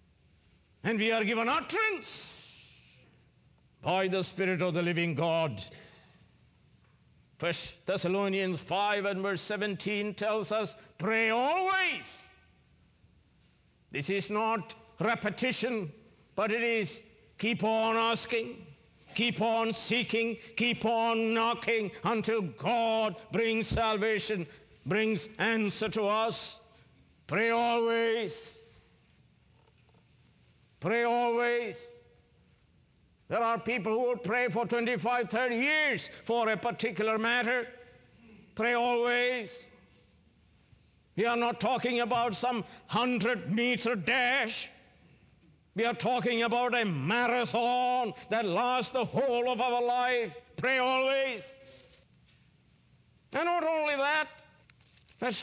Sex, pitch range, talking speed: male, 205-240 Hz, 105 wpm